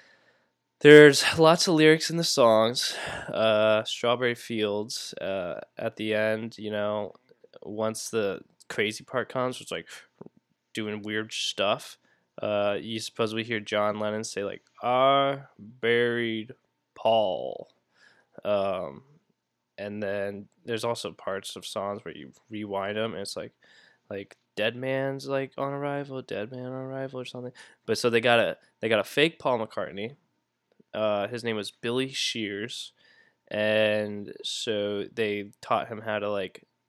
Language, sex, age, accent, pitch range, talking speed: English, male, 20-39, American, 105-130 Hz, 145 wpm